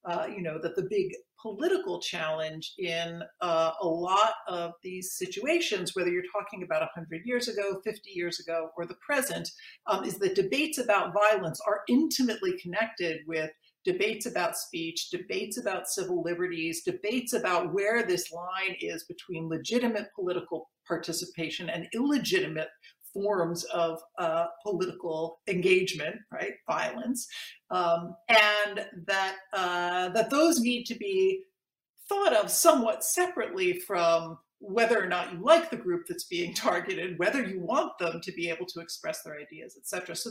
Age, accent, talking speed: 50-69, American, 150 wpm